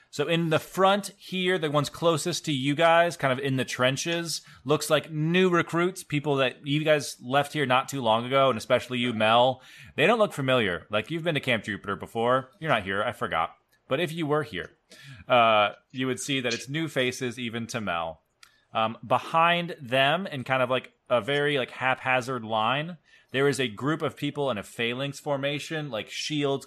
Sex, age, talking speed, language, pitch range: male, 20-39, 200 wpm, English, 115-150 Hz